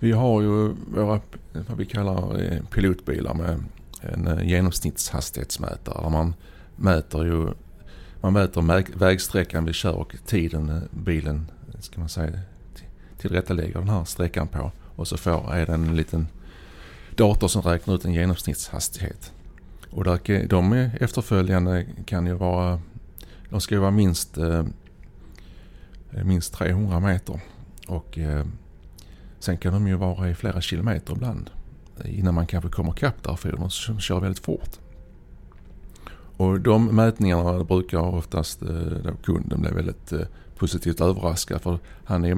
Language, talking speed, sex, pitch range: Swedish, 130 wpm, male, 80-95 Hz